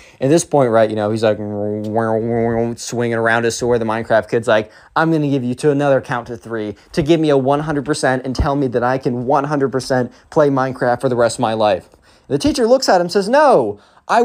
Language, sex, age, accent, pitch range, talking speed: English, male, 20-39, American, 130-175 Hz, 230 wpm